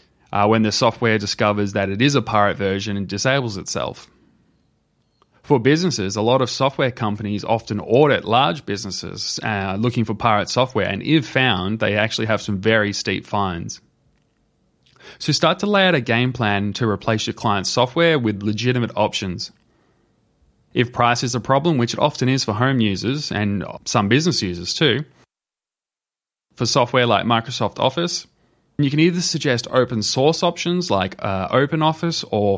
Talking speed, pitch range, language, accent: 165 wpm, 105-135 Hz, English, Australian